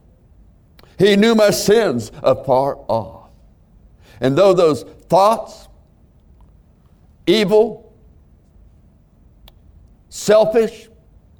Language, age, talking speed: English, 60-79, 65 wpm